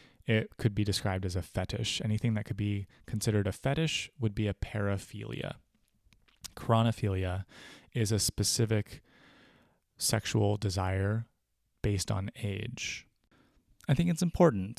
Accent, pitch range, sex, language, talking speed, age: American, 95-115 Hz, male, English, 125 wpm, 20-39